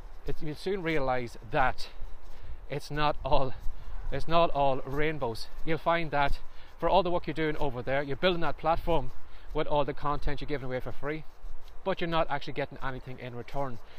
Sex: male